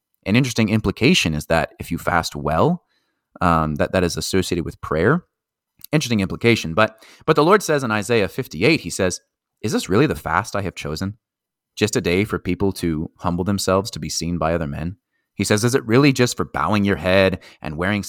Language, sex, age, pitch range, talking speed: English, male, 30-49, 90-115 Hz, 205 wpm